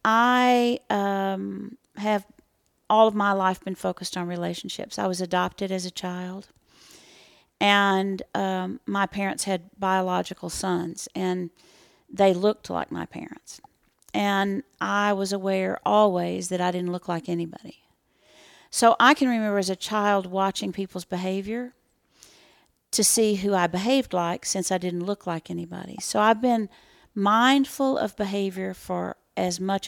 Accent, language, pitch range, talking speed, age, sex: American, English, 180-215 Hz, 145 wpm, 40-59, female